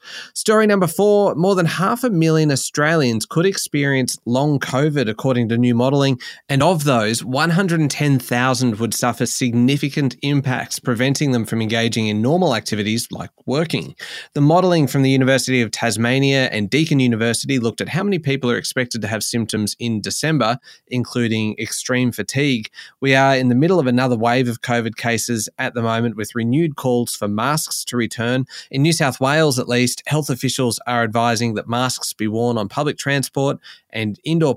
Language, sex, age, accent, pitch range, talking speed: English, male, 20-39, Australian, 115-145 Hz, 170 wpm